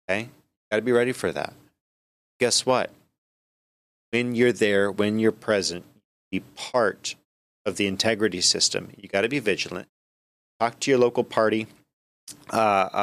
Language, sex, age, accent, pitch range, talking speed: English, male, 30-49, American, 95-115 Hz, 145 wpm